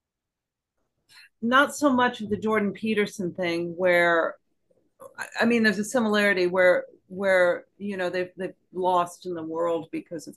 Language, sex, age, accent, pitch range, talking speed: English, female, 40-59, American, 150-185 Hz, 150 wpm